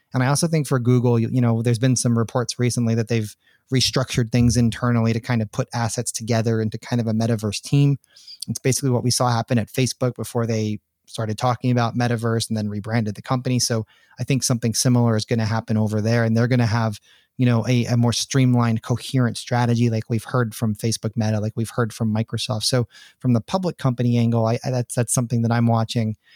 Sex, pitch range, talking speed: male, 115-130 Hz, 225 wpm